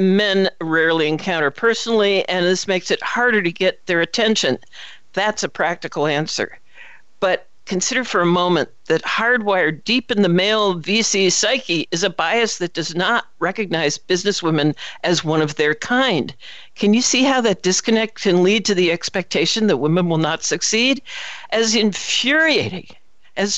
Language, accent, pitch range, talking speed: English, American, 170-230 Hz, 160 wpm